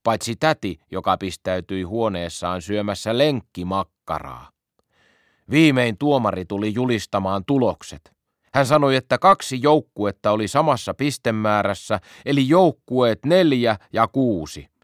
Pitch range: 95-140 Hz